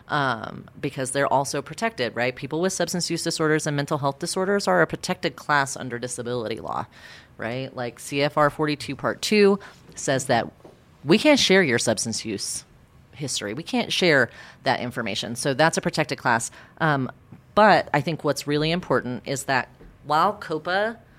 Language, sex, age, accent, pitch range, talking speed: English, female, 30-49, American, 125-155 Hz, 165 wpm